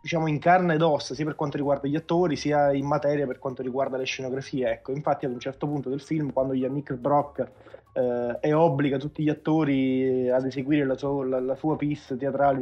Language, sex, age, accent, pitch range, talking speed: Italian, male, 20-39, native, 130-155 Hz, 205 wpm